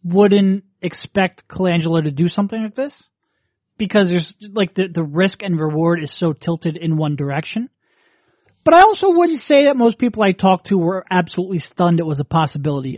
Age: 30-49